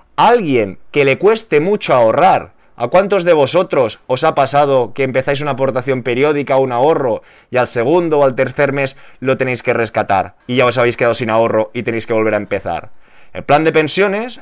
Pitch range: 130-175 Hz